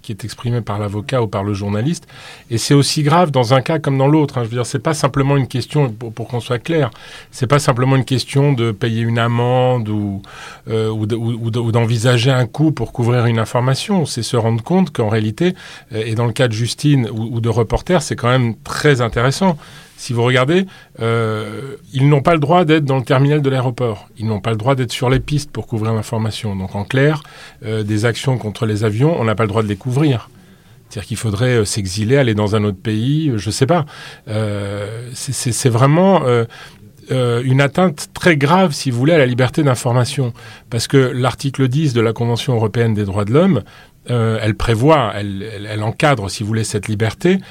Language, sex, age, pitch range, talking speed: French, male, 30-49, 110-145 Hz, 220 wpm